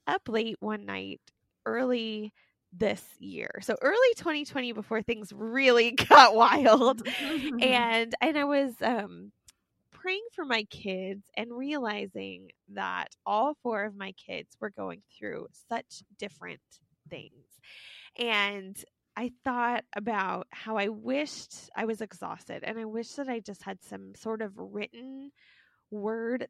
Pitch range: 195-245 Hz